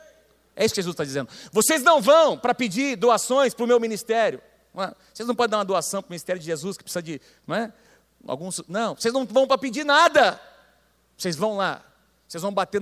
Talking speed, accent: 210 wpm, Brazilian